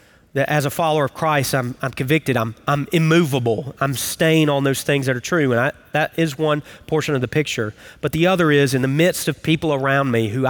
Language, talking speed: English, 230 wpm